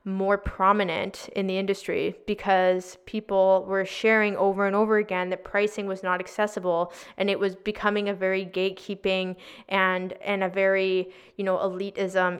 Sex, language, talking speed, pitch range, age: female, English, 155 wpm, 185-210 Hz, 20-39